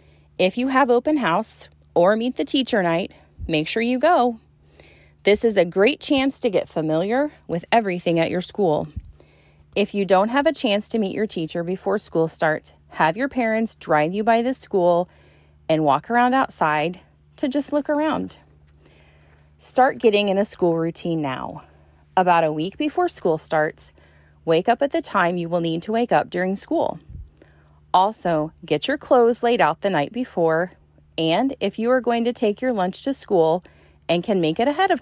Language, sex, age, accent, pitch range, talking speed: English, female, 30-49, American, 140-235 Hz, 185 wpm